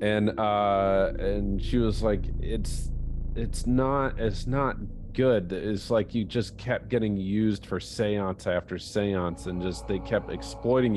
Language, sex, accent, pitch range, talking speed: English, male, American, 95-115 Hz, 155 wpm